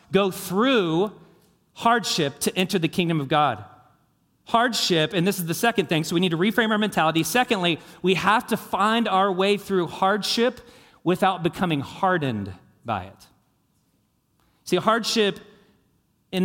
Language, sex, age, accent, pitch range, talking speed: English, male, 40-59, American, 165-215 Hz, 145 wpm